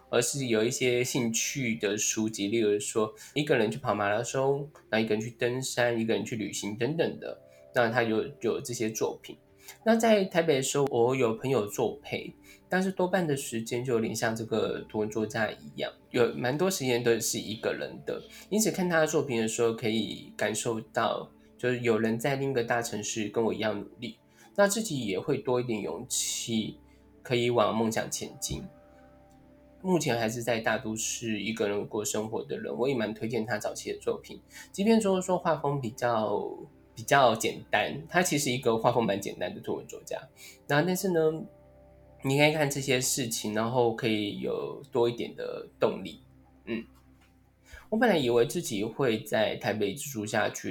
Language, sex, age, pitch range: Chinese, male, 10-29, 110-140 Hz